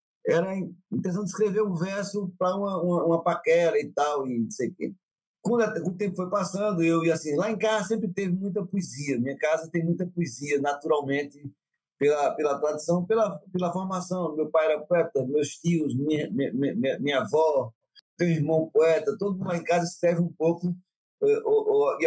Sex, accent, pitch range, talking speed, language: male, Brazilian, 155-190 Hz, 180 wpm, Portuguese